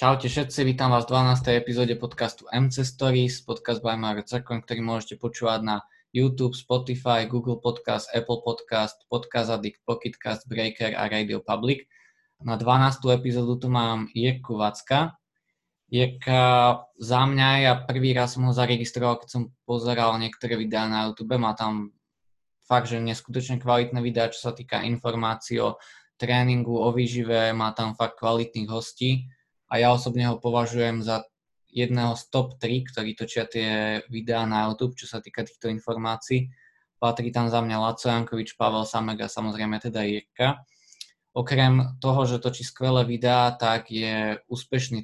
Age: 20-39